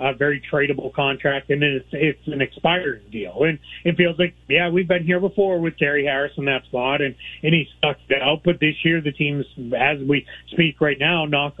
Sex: male